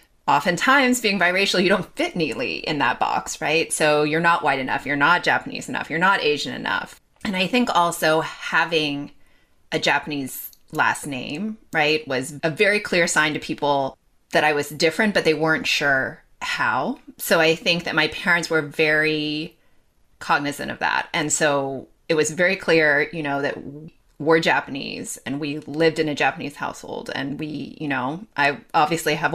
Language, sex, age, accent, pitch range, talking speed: English, female, 30-49, American, 150-185 Hz, 175 wpm